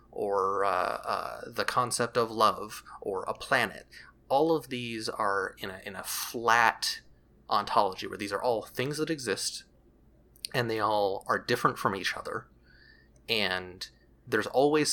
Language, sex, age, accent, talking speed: English, male, 30-49, American, 155 wpm